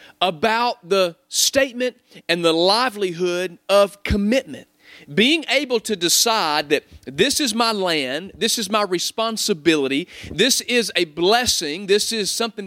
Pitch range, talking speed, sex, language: 180-250 Hz, 135 wpm, male, English